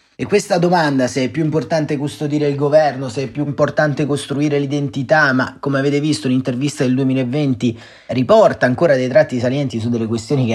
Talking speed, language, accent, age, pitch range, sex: 180 wpm, Italian, native, 30-49, 115-135 Hz, male